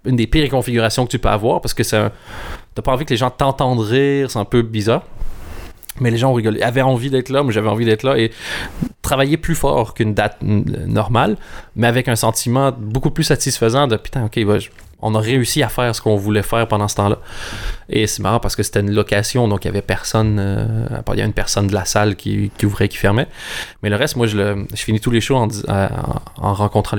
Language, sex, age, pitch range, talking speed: French, male, 20-39, 100-120 Hz, 250 wpm